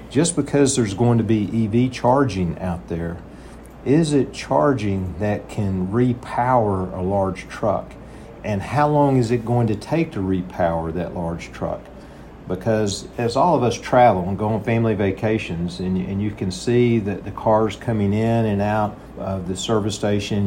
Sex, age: male, 50-69